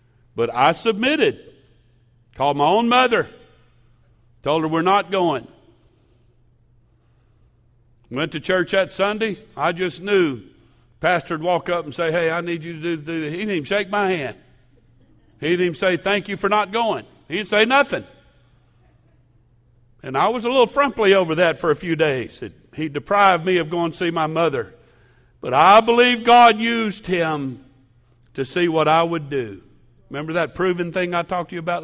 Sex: male